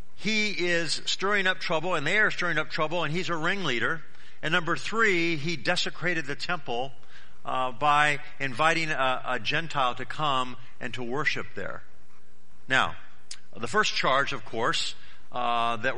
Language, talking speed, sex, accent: English, 160 wpm, male, American